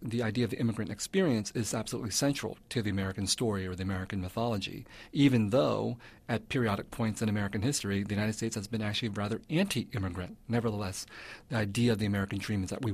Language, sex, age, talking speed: English, male, 40-59, 200 wpm